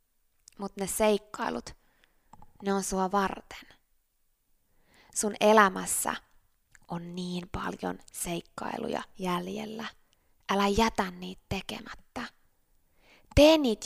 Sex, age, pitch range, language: female, 20-39, 180-235 Hz, Finnish